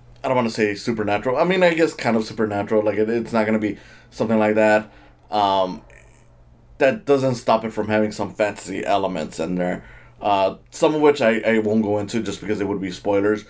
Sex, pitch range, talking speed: male, 105-120 Hz, 220 wpm